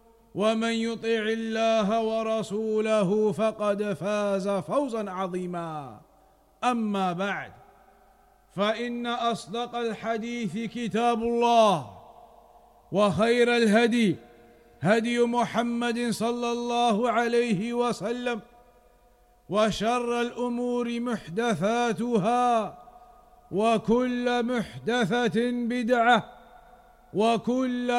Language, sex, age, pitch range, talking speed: English, male, 50-69, 220-250 Hz, 65 wpm